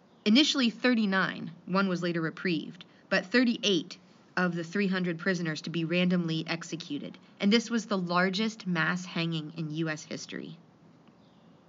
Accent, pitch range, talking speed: American, 170-215 Hz, 135 wpm